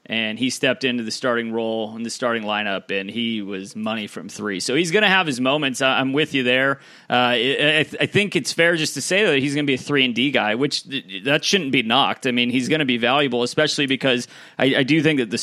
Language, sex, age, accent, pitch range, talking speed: English, male, 30-49, American, 120-145 Hz, 270 wpm